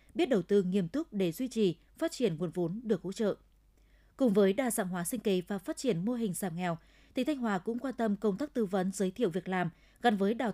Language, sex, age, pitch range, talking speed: Vietnamese, female, 20-39, 185-235 Hz, 260 wpm